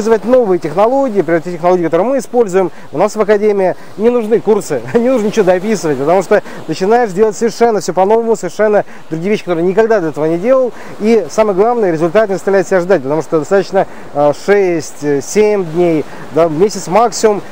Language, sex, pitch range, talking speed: Russian, male, 180-230 Hz, 170 wpm